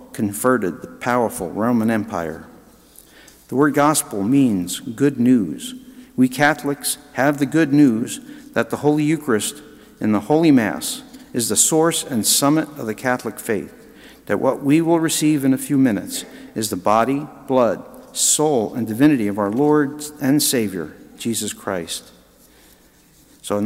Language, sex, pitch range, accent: English, male, 115-160 Hz, American